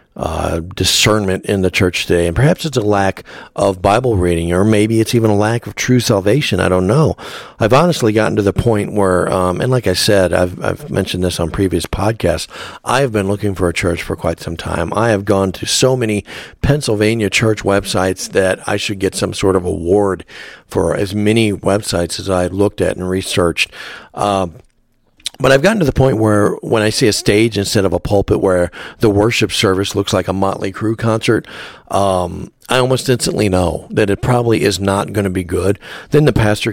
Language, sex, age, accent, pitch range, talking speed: English, male, 50-69, American, 95-115 Hz, 205 wpm